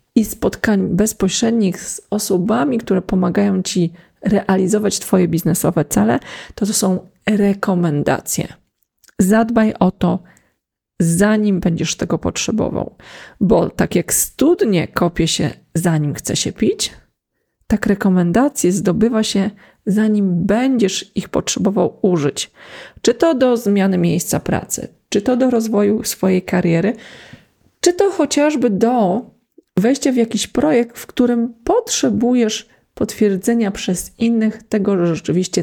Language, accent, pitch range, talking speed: Polish, native, 185-245 Hz, 120 wpm